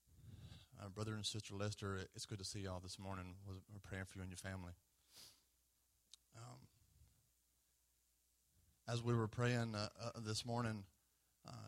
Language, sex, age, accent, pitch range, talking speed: English, male, 30-49, American, 80-120 Hz, 150 wpm